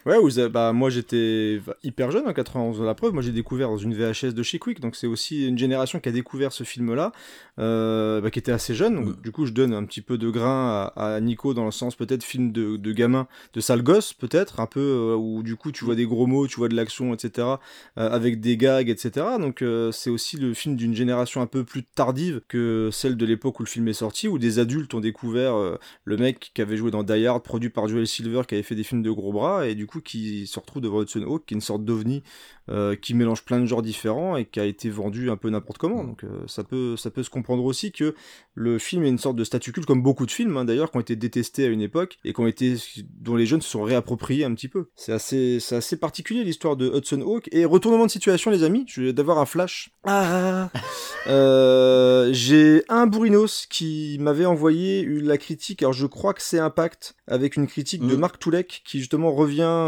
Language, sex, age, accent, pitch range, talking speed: French, male, 30-49, French, 115-145 Hz, 250 wpm